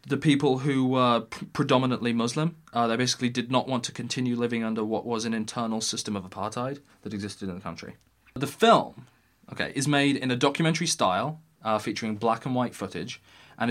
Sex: male